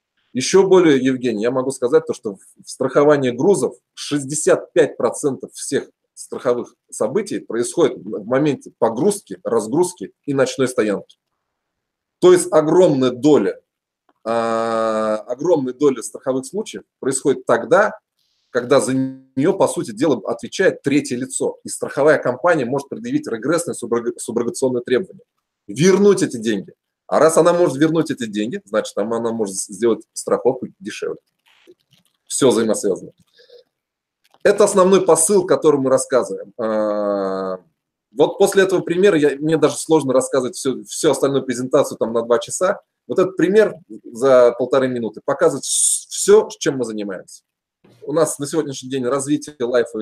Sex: male